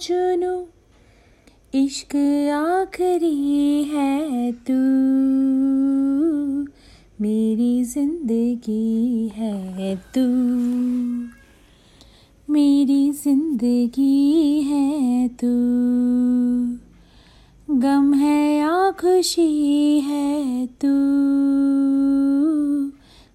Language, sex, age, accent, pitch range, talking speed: Hindi, female, 30-49, native, 245-300 Hz, 50 wpm